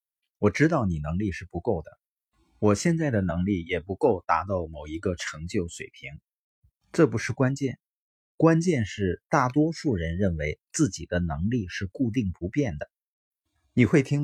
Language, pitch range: Chinese, 90-120 Hz